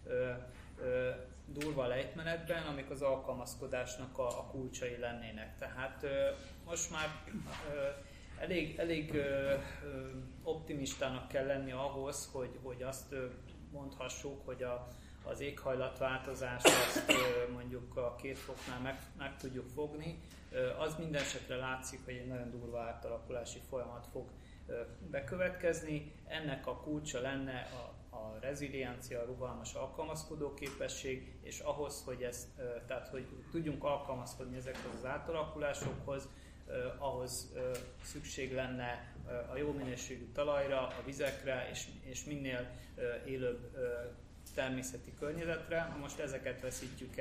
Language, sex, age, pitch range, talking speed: Hungarian, male, 30-49, 125-145 Hz, 105 wpm